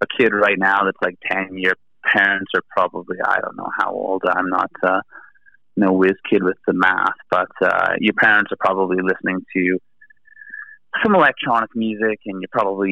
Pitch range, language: 95-110 Hz, English